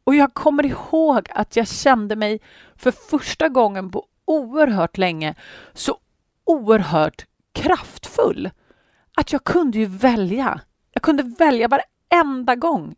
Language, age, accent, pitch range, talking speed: Swedish, 30-49, native, 170-260 Hz, 125 wpm